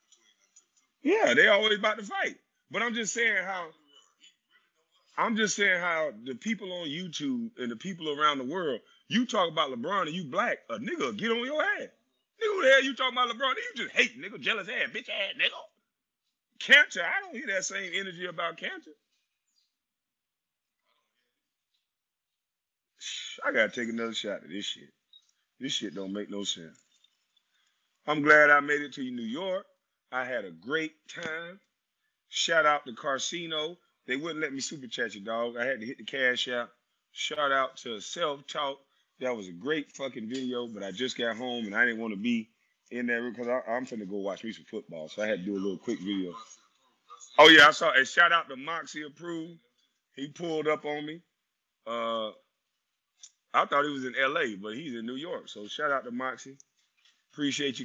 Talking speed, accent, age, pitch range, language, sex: 195 wpm, American, 30-49, 120-195 Hz, English, male